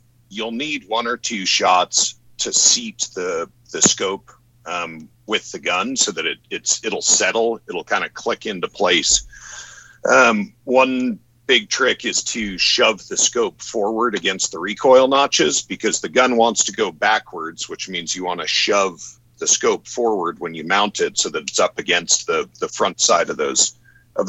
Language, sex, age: English, male, 50-69